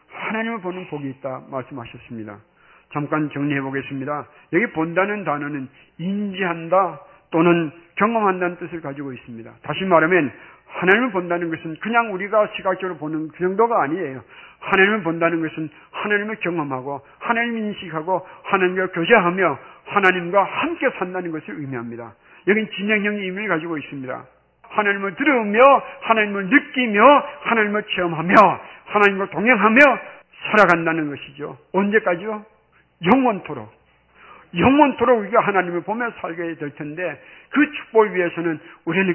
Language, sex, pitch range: Korean, male, 155-215 Hz